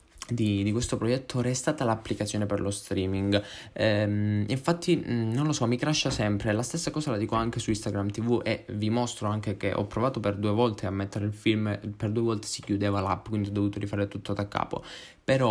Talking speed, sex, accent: 215 wpm, male, native